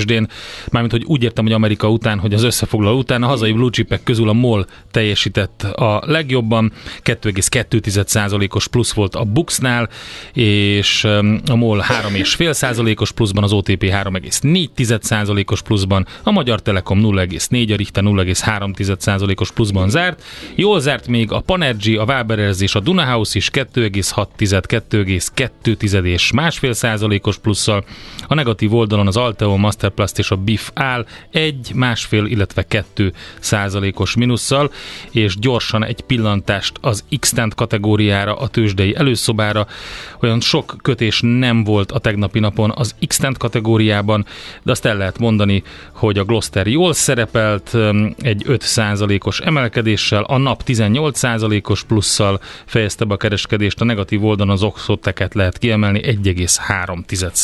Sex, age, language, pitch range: male, 30-49, Hungarian, 100-120 Hz